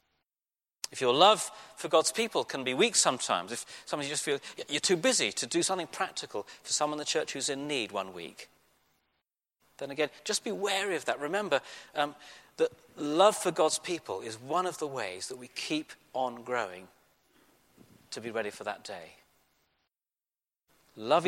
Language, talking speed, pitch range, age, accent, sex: English, 175 wpm, 125-205 Hz, 40-59, British, male